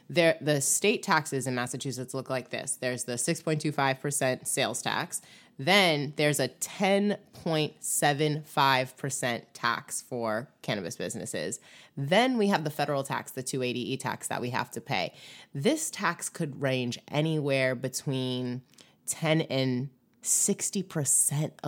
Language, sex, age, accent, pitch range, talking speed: English, female, 20-39, American, 130-175 Hz, 120 wpm